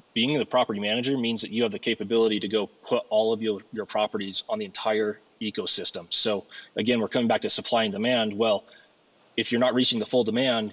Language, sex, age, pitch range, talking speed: English, male, 20-39, 110-130 Hz, 220 wpm